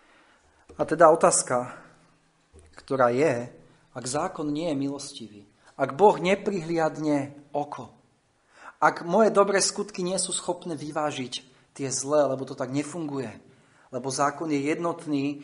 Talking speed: 125 wpm